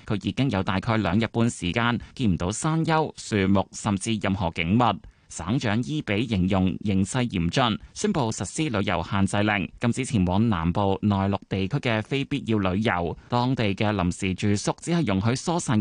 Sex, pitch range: male, 95-135 Hz